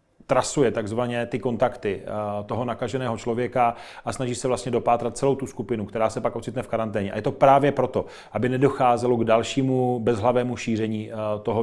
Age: 30-49